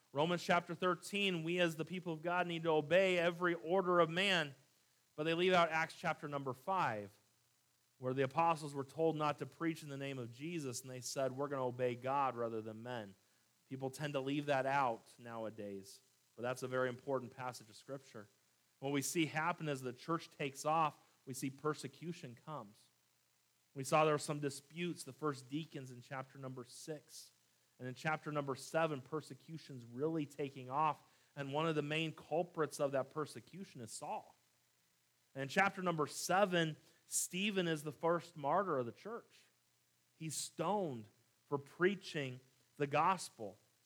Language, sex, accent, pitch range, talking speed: English, male, American, 130-170 Hz, 175 wpm